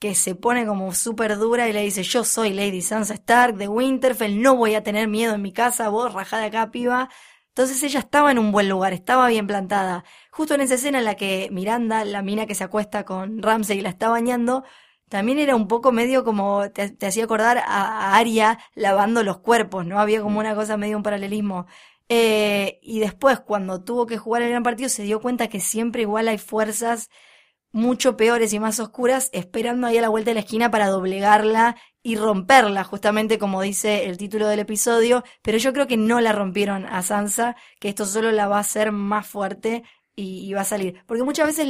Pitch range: 205-240 Hz